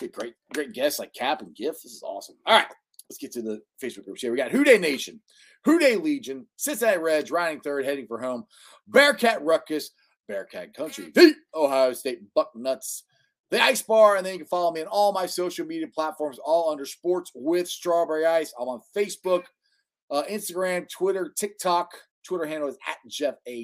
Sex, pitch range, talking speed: male, 145-230 Hz, 190 wpm